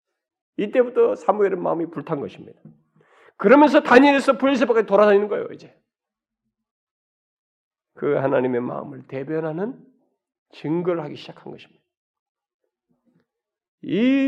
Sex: male